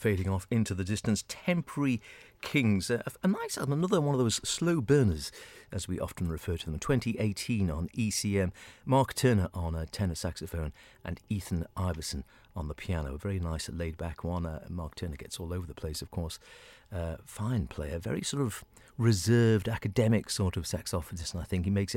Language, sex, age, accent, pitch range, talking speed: English, male, 40-59, British, 85-110 Hz, 190 wpm